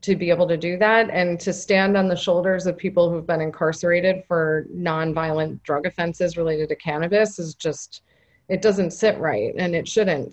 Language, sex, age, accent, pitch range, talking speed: English, female, 30-49, American, 160-190 Hz, 190 wpm